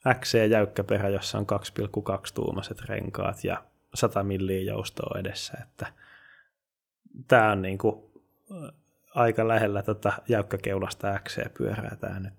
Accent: native